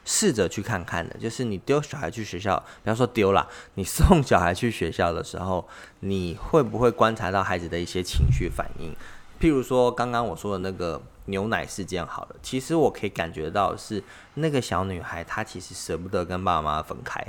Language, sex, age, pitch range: Chinese, male, 20-39, 95-125 Hz